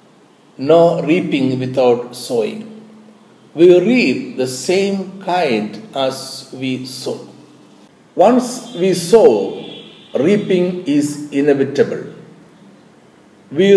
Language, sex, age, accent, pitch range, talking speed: Malayalam, male, 60-79, native, 130-185 Hz, 85 wpm